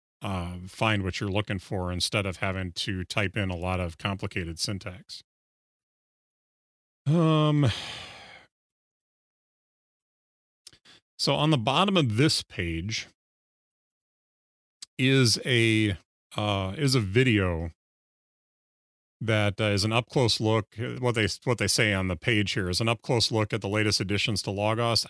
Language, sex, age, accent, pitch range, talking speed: English, male, 30-49, American, 95-115 Hz, 140 wpm